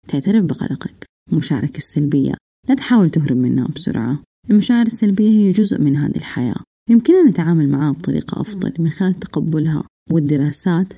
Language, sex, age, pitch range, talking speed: Arabic, female, 30-49, 150-200 Hz, 135 wpm